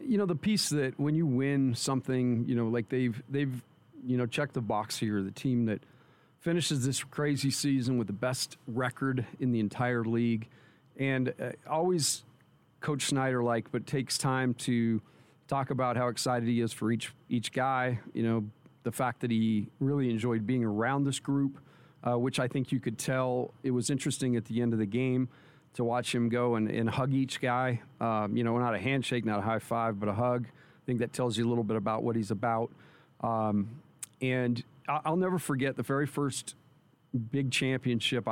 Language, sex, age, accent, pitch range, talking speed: English, male, 40-59, American, 115-135 Hz, 200 wpm